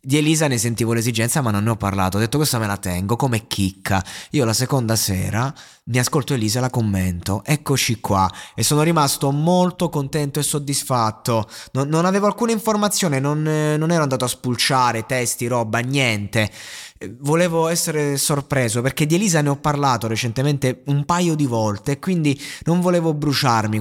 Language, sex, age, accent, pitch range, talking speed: Italian, male, 20-39, native, 110-150 Hz, 175 wpm